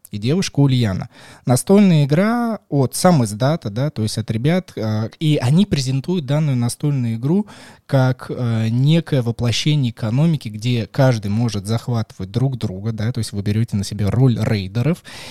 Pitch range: 115-155 Hz